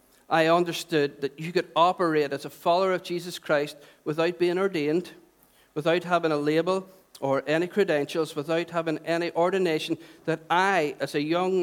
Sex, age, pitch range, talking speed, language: male, 50-69, 150-180 Hz, 160 wpm, English